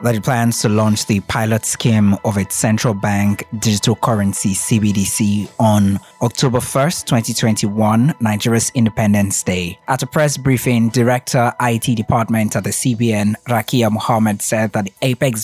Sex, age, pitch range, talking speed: male, 20-39, 110-130 Hz, 145 wpm